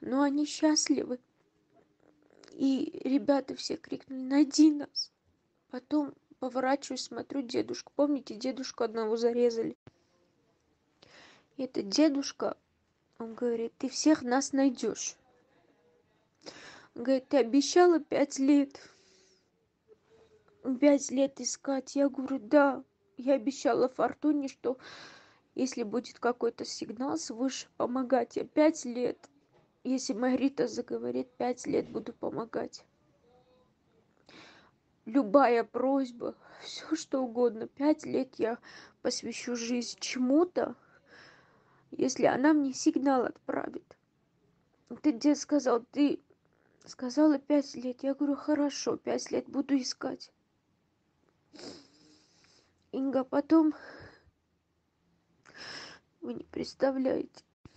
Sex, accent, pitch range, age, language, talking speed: female, native, 250-295 Hz, 20-39, Russian, 95 wpm